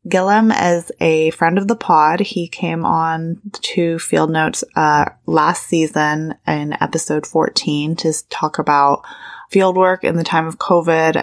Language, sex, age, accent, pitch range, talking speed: English, female, 20-39, American, 145-170 Hz, 150 wpm